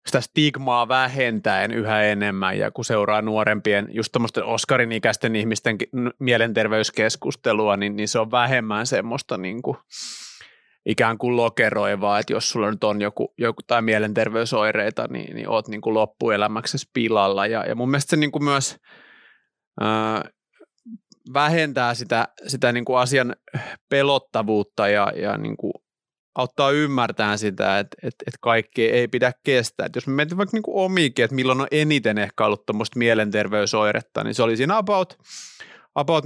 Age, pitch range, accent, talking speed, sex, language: 30-49, 110-135 Hz, native, 135 wpm, male, Finnish